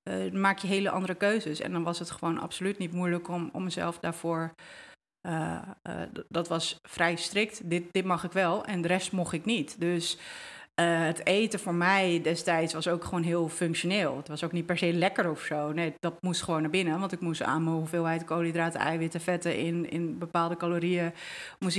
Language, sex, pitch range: Dutch, female, 170-190 Hz